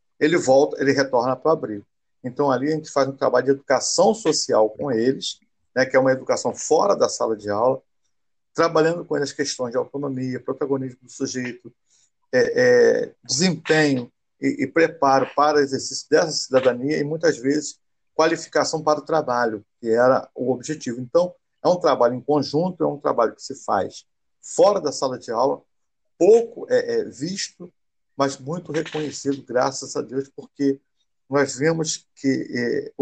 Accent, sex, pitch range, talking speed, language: Brazilian, male, 130-160 Hz, 165 wpm, Portuguese